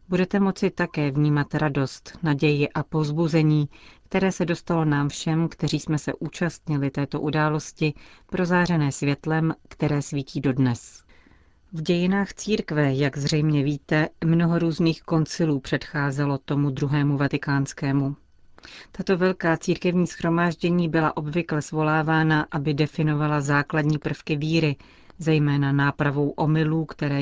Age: 40-59